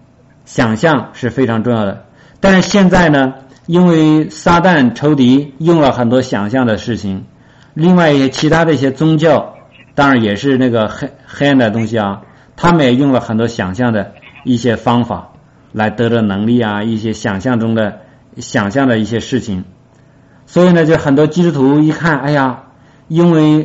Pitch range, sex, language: 115-145 Hz, male, Chinese